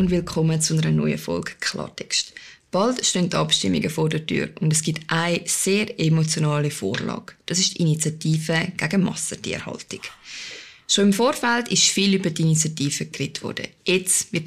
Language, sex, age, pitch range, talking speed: German, female, 20-39, 160-200 Hz, 160 wpm